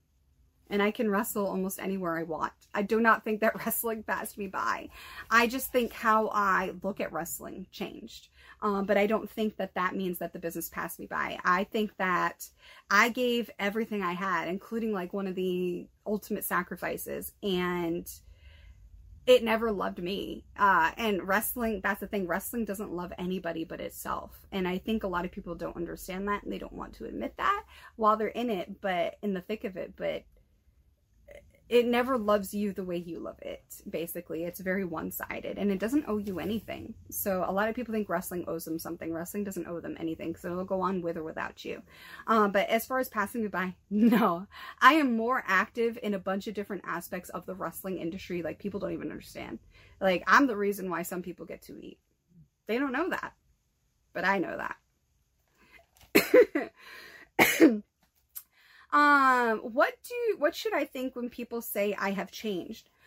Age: 30-49